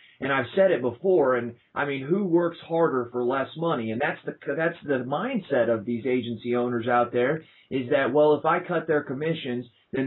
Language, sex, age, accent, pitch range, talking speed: English, male, 30-49, American, 120-145 Hz, 210 wpm